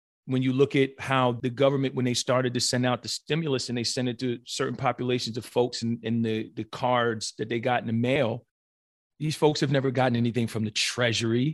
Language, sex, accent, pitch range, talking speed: English, male, American, 120-140 Hz, 230 wpm